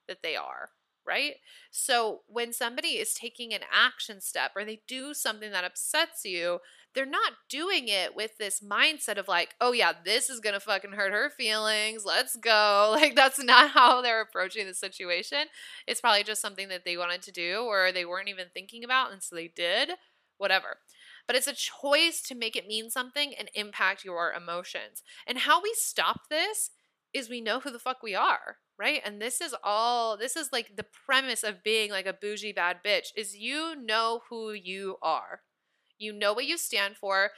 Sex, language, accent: female, English, American